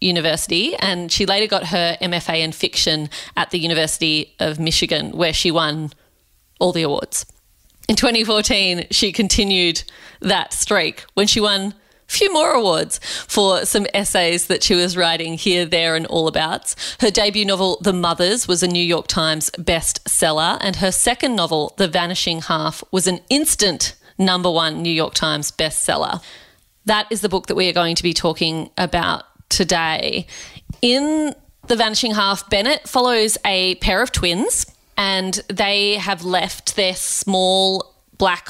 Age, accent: 30-49, Australian